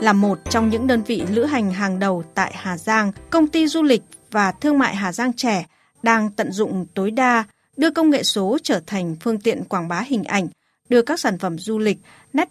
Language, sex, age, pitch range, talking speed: Vietnamese, female, 20-39, 195-255 Hz, 225 wpm